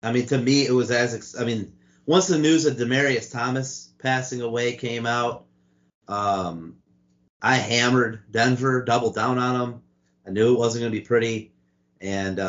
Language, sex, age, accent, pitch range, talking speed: English, male, 30-49, American, 90-120 Hz, 170 wpm